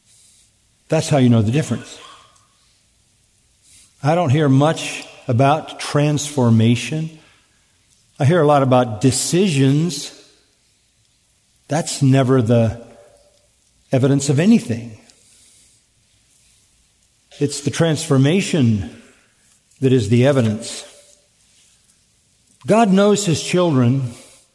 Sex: male